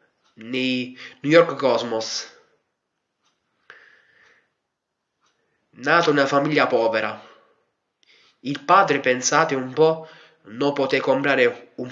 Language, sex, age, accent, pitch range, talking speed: Italian, male, 20-39, native, 125-155 Hz, 90 wpm